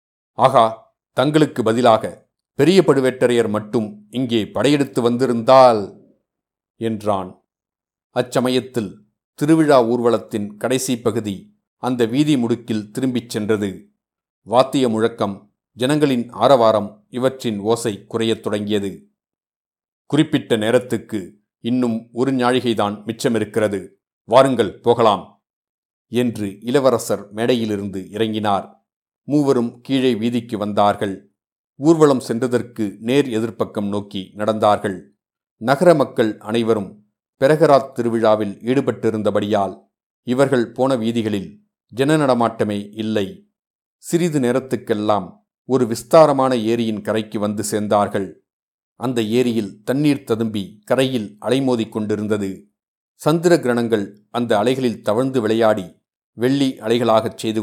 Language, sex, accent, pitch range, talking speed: Tamil, male, native, 105-130 Hz, 85 wpm